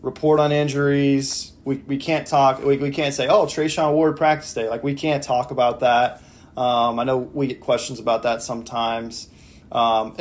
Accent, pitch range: American, 125-155 Hz